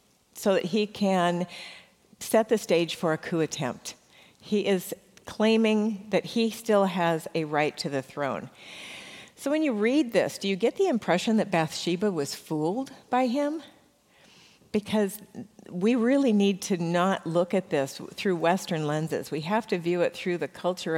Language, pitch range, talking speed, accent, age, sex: English, 165-215 Hz, 170 wpm, American, 50-69, female